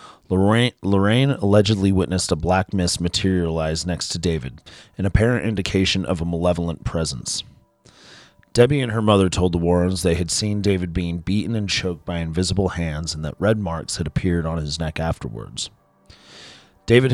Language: English